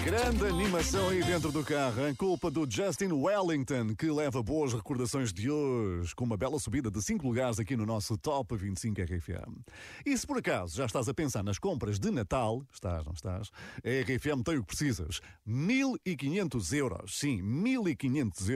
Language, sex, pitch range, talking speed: Portuguese, male, 105-145 Hz, 180 wpm